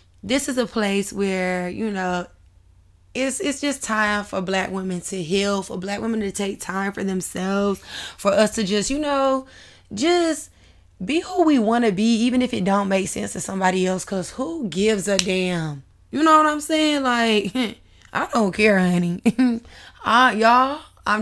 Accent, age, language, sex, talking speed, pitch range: American, 20-39, English, female, 180 wpm, 185-230 Hz